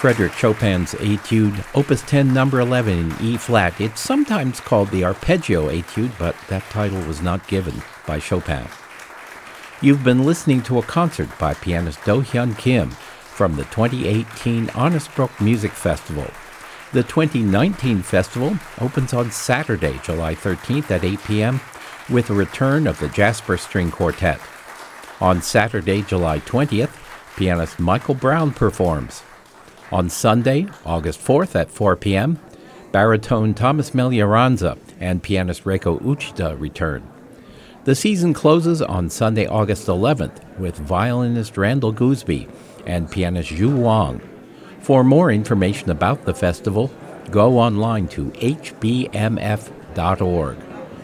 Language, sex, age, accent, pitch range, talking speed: English, male, 60-79, American, 90-125 Hz, 125 wpm